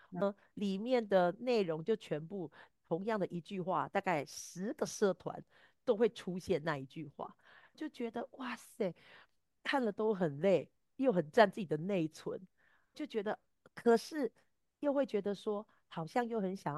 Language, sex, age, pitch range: Chinese, female, 40-59, 165-215 Hz